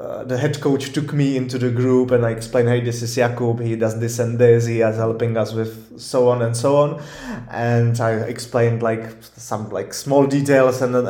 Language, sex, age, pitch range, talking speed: English, male, 20-39, 120-140 Hz, 215 wpm